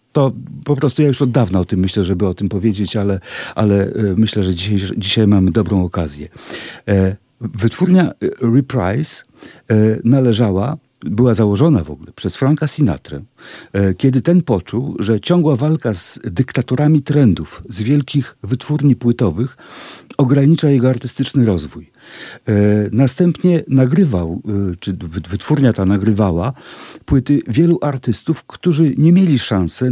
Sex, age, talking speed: male, 50-69, 125 wpm